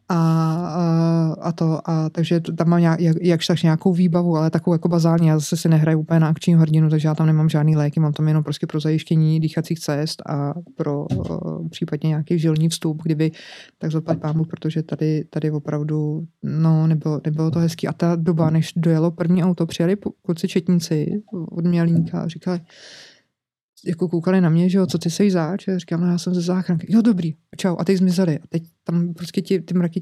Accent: native